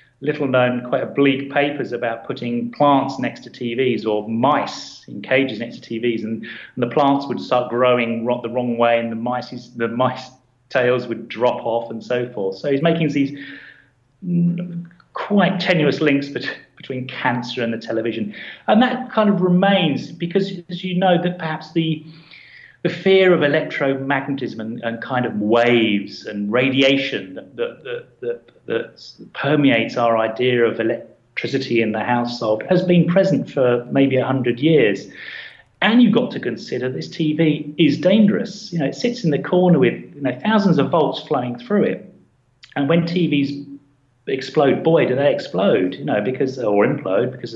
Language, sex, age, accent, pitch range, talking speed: English, male, 30-49, British, 120-170 Hz, 170 wpm